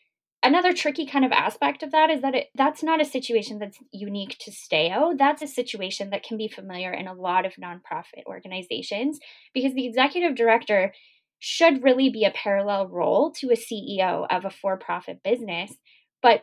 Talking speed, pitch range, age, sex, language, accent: 175 wpm, 205-275 Hz, 10-29, female, English, American